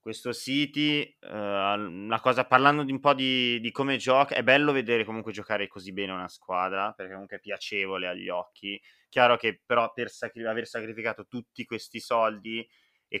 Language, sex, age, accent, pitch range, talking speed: Italian, male, 20-39, native, 100-125 Hz, 175 wpm